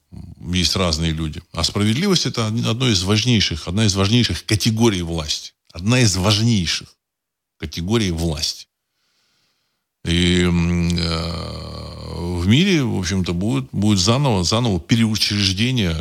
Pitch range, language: 85-110 Hz, Russian